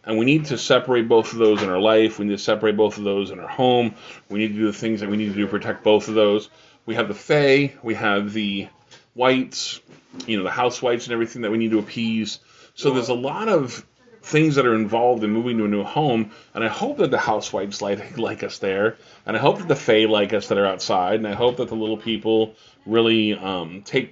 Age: 30-49